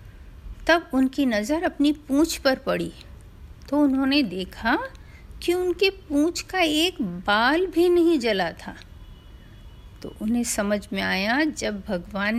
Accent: native